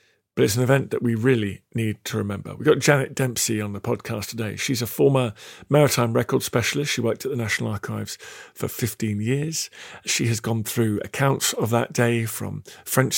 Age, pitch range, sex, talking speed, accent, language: 50-69, 115-140 Hz, male, 195 wpm, British, English